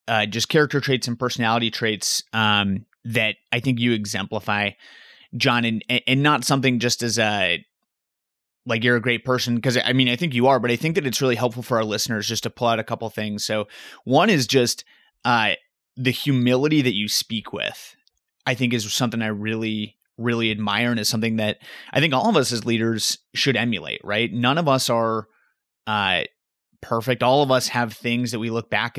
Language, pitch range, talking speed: English, 110-125 Hz, 205 wpm